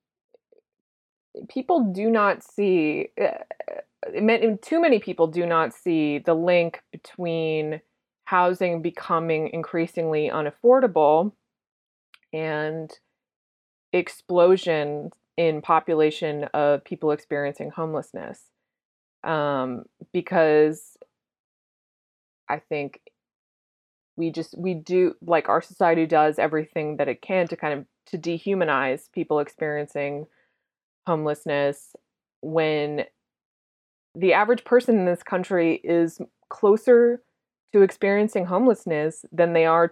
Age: 20-39